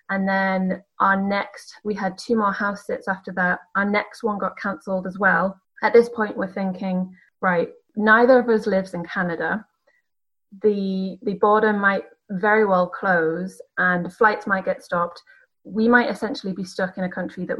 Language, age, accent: English, 30-49, British